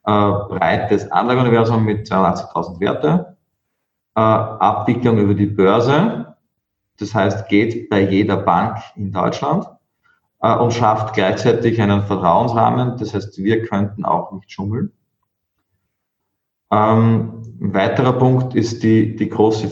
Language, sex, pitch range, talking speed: German, male, 100-115 Hz, 120 wpm